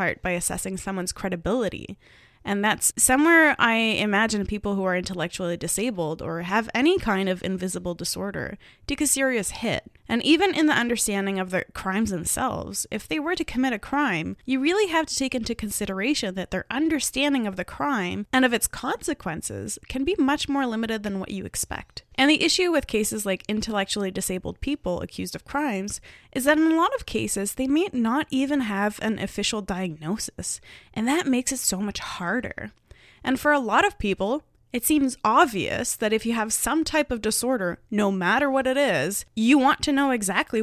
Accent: American